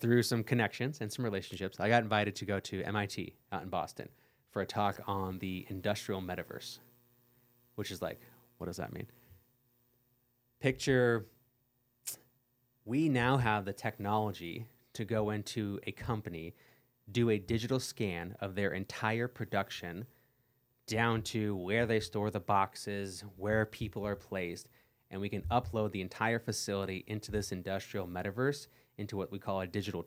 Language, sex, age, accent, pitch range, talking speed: English, male, 20-39, American, 95-120 Hz, 155 wpm